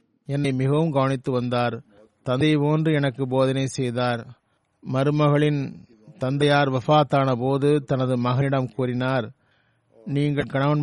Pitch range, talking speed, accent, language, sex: 125-145 Hz, 100 wpm, native, Tamil, male